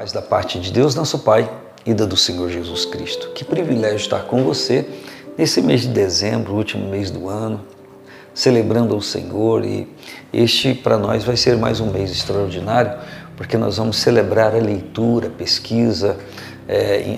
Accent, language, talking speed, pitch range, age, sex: Brazilian, Portuguese, 170 wpm, 100-120 Hz, 50-69, male